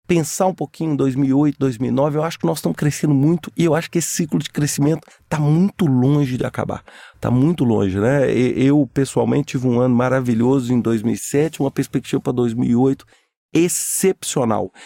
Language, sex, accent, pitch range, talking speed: Portuguese, male, Brazilian, 125-155 Hz, 175 wpm